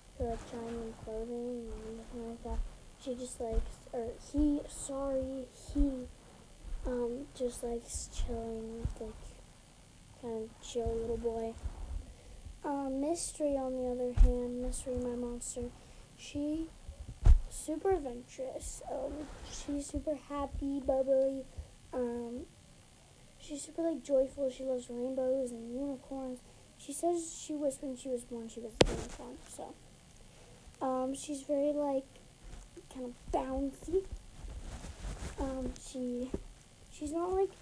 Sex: female